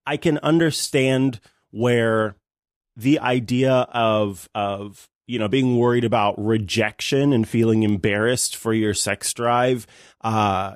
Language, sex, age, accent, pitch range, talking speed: English, male, 30-49, American, 105-135 Hz, 125 wpm